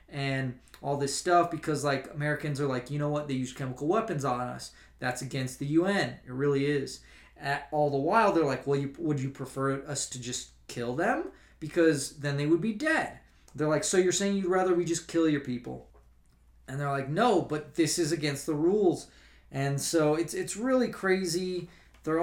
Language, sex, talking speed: English, male, 205 wpm